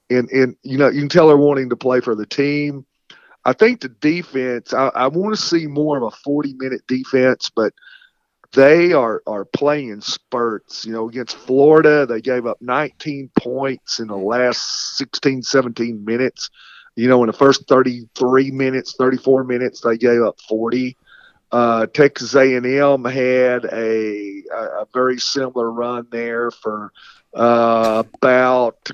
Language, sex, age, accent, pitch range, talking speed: English, male, 40-59, American, 120-135 Hz, 160 wpm